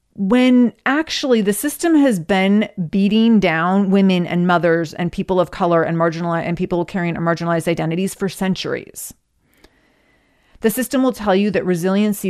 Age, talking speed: 30-49, 150 wpm